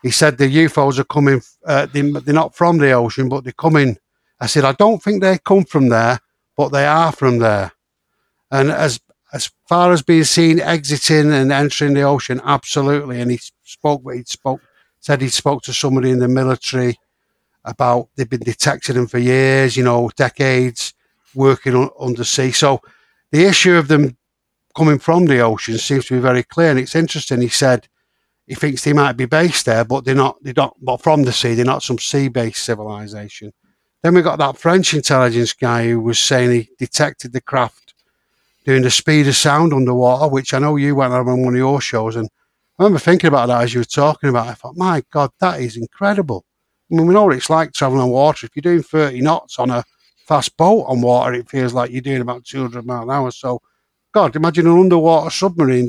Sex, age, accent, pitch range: male, 60-79, British, 125-155 Hz